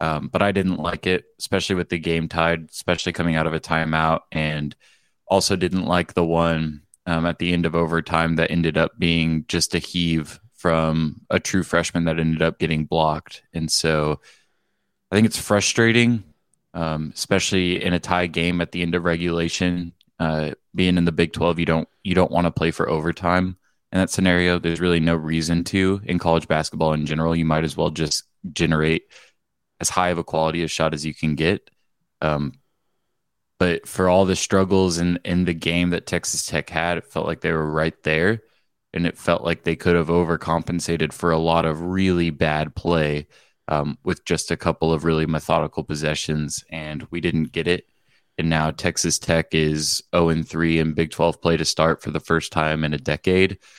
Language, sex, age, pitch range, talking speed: English, male, 20-39, 80-90 Hz, 195 wpm